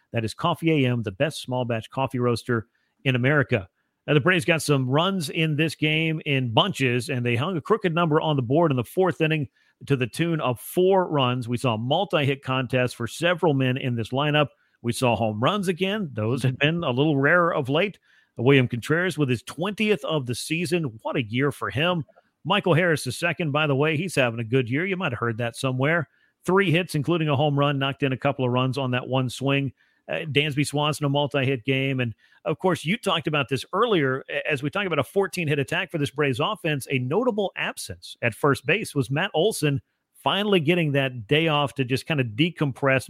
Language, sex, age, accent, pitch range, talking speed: English, male, 40-59, American, 130-160 Hz, 215 wpm